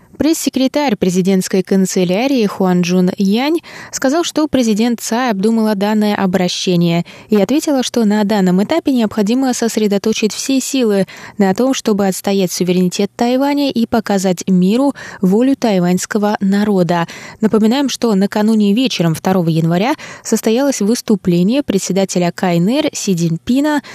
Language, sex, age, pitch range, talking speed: Russian, female, 20-39, 185-240 Hz, 115 wpm